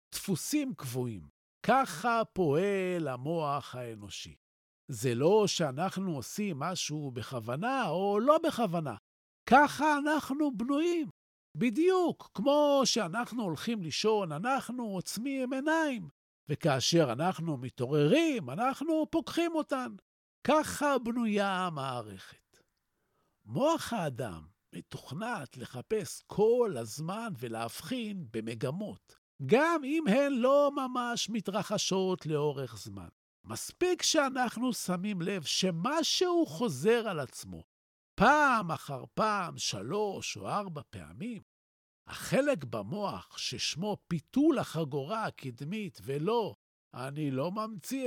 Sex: male